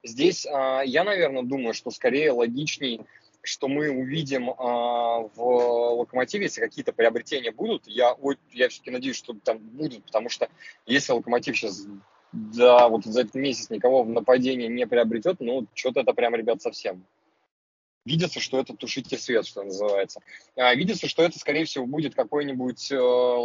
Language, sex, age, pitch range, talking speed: Russian, male, 20-39, 115-140 Hz, 150 wpm